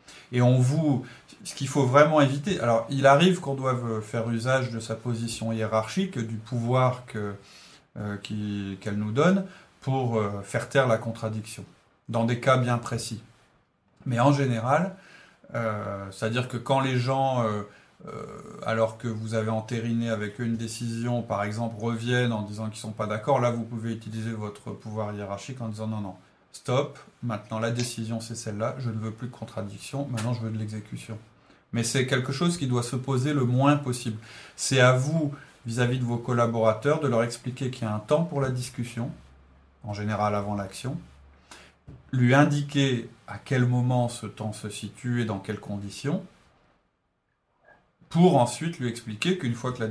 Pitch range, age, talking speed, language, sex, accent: 110-130 Hz, 30-49, 180 wpm, French, male, French